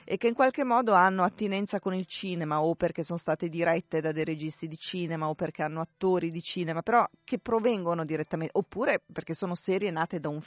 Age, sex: 30-49, female